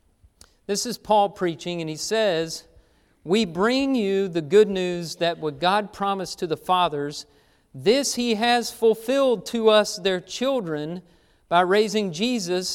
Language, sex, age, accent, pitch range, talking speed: English, male, 40-59, American, 160-220 Hz, 145 wpm